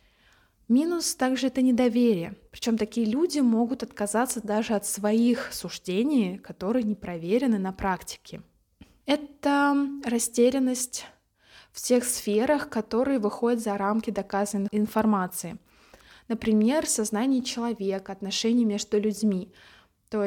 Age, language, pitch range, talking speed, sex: 20-39, Russian, 205-245 Hz, 105 wpm, female